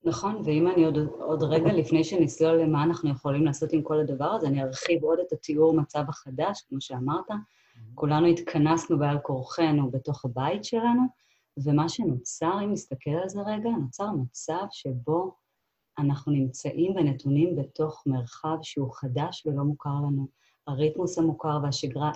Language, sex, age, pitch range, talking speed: Hebrew, female, 30-49, 140-160 Hz, 150 wpm